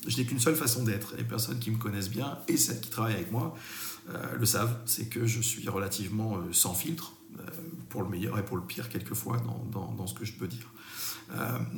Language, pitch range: French, 105-120 Hz